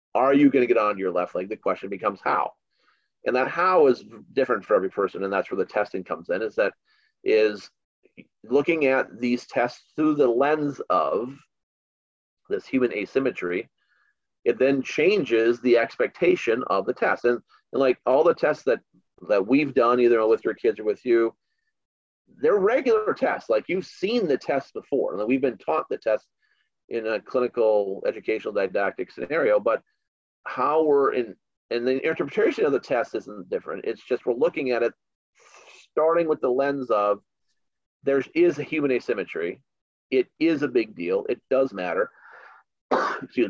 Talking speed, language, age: 170 wpm, English, 40-59